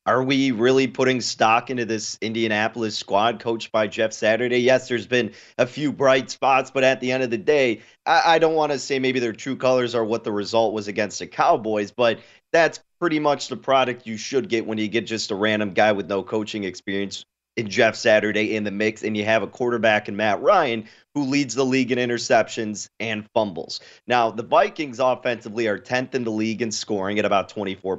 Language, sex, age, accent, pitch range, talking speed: English, male, 30-49, American, 110-130 Hz, 215 wpm